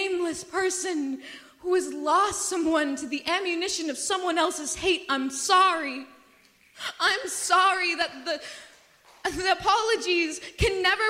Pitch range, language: 340-400 Hz, English